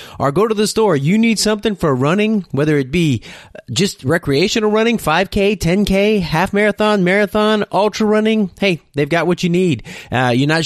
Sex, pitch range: male, 125-180 Hz